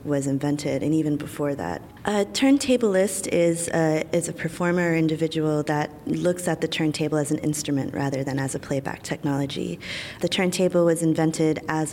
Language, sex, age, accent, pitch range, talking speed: English, female, 20-39, American, 145-160 Hz, 160 wpm